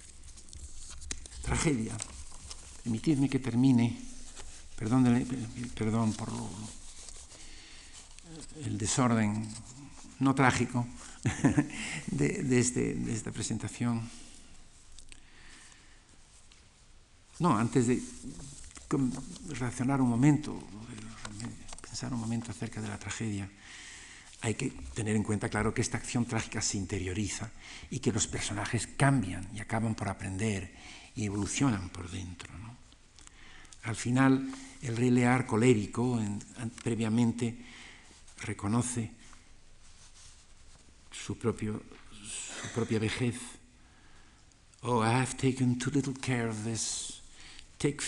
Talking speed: 100 wpm